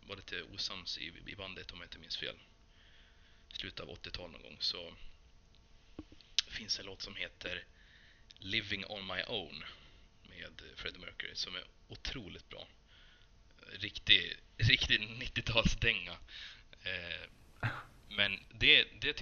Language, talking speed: Swedish, 125 wpm